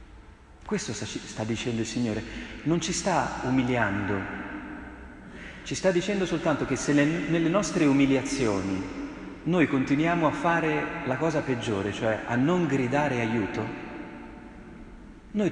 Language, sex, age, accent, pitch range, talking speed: Italian, male, 40-59, native, 105-140 Hz, 120 wpm